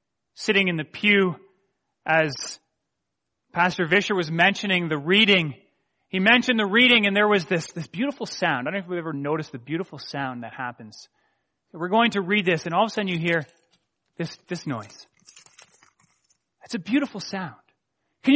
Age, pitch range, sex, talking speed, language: 30-49, 150-230 Hz, male, 175 wpm, English